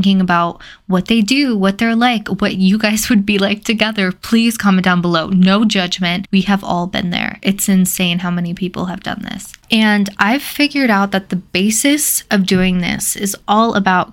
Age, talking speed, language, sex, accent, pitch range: 10-29, 195 wpm, English, female, American, 185-215 Hz